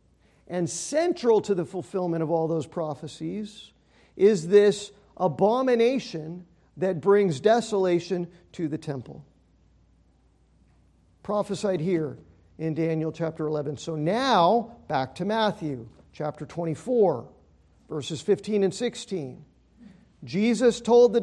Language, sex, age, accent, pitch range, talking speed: English, male, 50-69, American, 155-225 Hz, 105 wpm